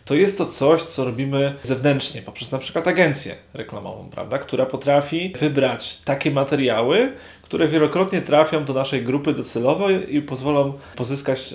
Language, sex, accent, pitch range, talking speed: Polish, male, native, 125-150 Hz, 145 wpm